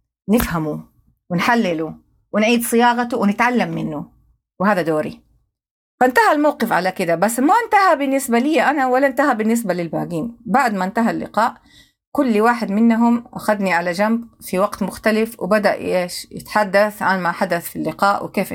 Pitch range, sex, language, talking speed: 190-235 Hz, female, Arabic, 140 wpm